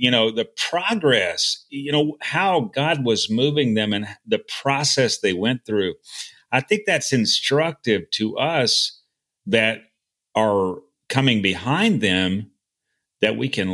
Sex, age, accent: male, 40-59, American